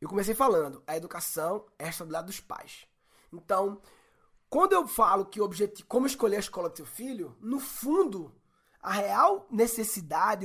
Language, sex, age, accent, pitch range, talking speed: Portuguese, male, 20-39, Brazilian, 195-265 Hz, 165 wpm